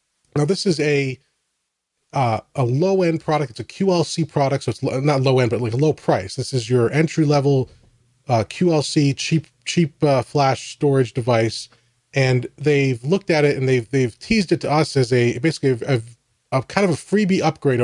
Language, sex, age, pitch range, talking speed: English, male, 30-49, 120-150 Hz, 190 wpm